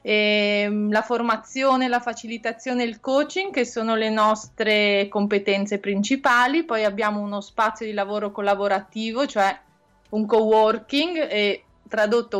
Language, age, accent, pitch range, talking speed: Italian, 20-39, native, 205-245 Hz, 125 wpm